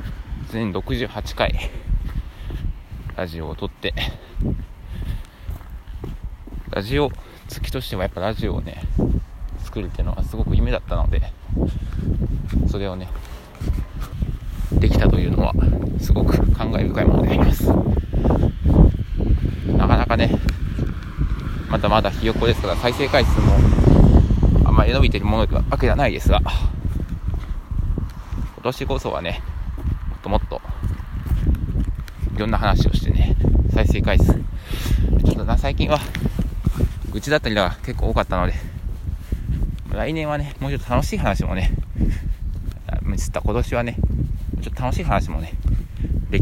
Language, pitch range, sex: Japanese, 80-100 Hz, male